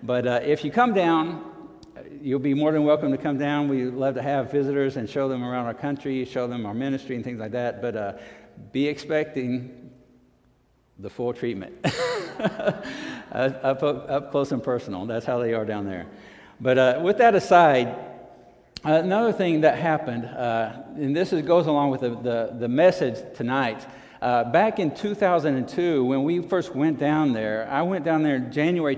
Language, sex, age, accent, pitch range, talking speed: English, male, 60-79, American, 125-150 Hz, 185 wpm